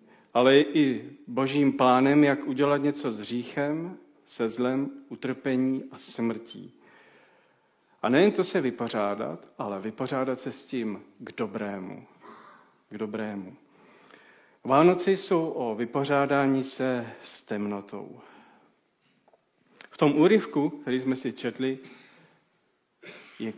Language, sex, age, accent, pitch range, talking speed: Czech, male, 50-69, native, 110-140 Hz, 110 wpm